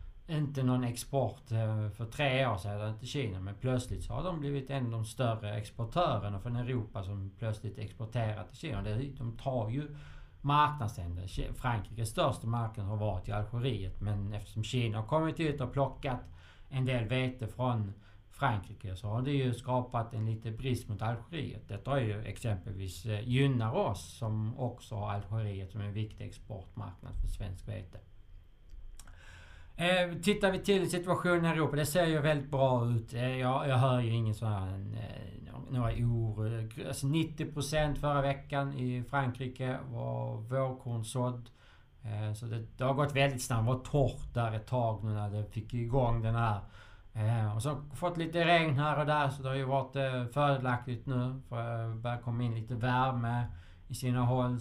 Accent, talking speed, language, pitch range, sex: Norwegian, 175 wpm, Swedish, 105-135 Hz, male